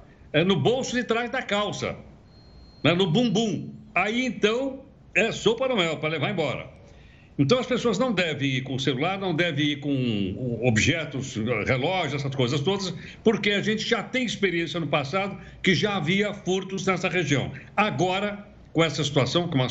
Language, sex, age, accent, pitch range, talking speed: Portuguese, male, 60-79, Brazilian, 140-195 Hz, 175 wpm